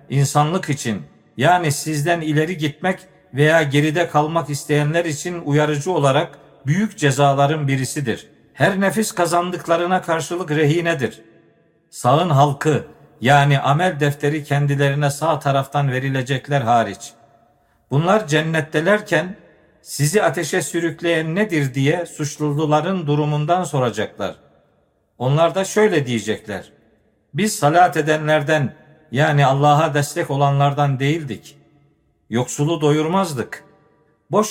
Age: 50-69